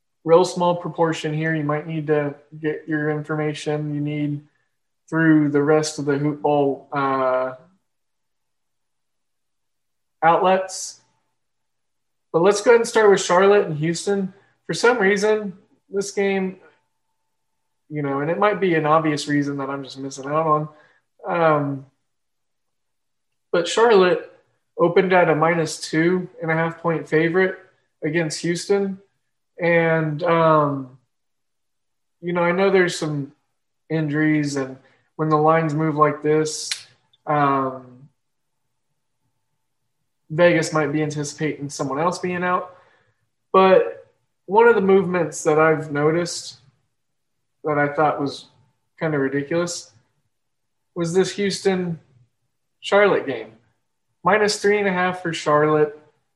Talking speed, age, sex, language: 125 wpm, 20-39, male, English